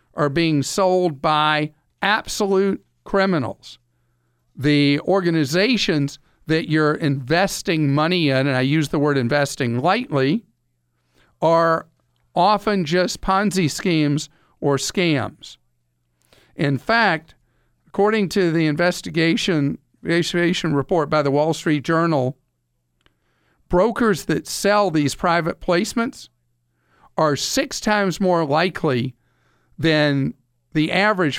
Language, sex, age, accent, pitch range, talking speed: English, male, 50-69, American, 130-180 Hz, 105 wpm